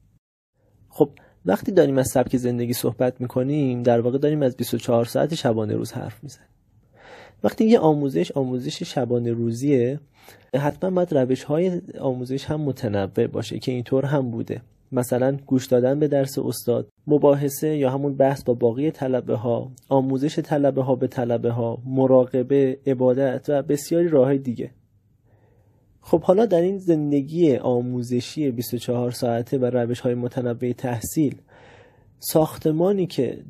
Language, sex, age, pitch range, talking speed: Persian, male, 30-49, 120-145 Hz, 140 wpm